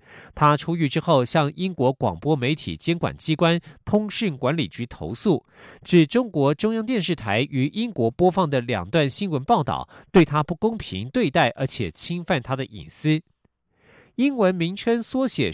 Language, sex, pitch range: German, male, 130-185 Hz